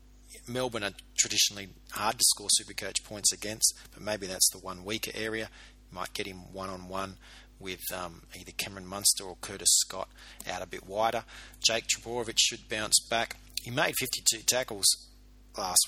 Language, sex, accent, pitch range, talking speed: English, male, Australian, 95-115 Hz, 160 wpm